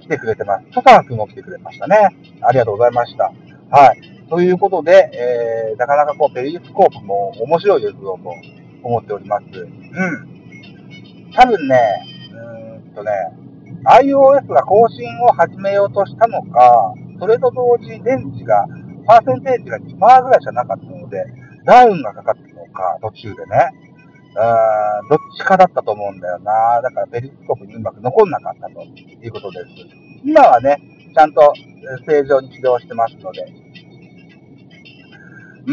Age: 50-69